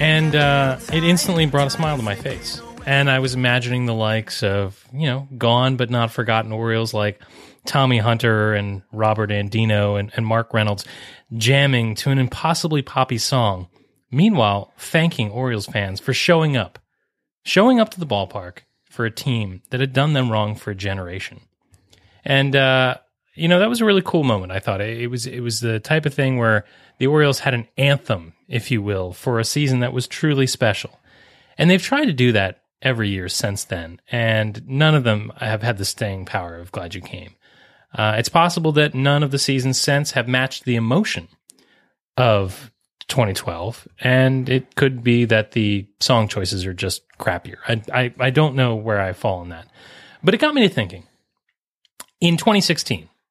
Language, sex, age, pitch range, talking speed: English, male, 30-49, 105-140 Hz, 185 wpm